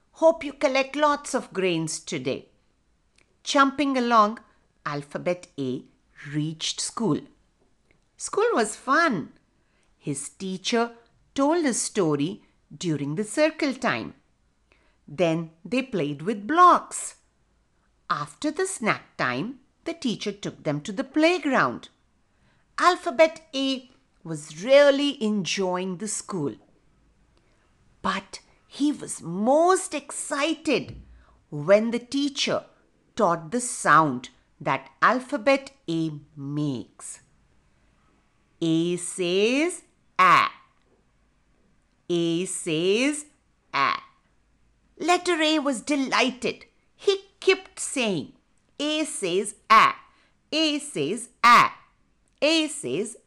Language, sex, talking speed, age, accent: English, female, 95 wpm, 50-69, Indian